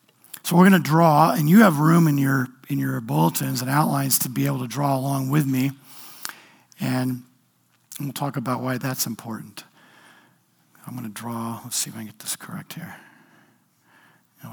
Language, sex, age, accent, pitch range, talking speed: English, male, 50-69, American, 125-150 Hz, 185 wpm